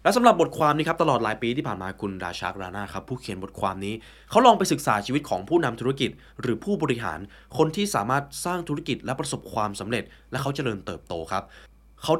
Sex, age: male, 20-39